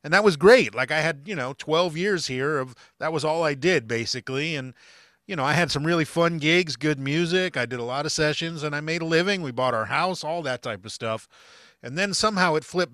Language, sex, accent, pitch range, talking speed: English, male, American, 130-165 Hz, 255 wpm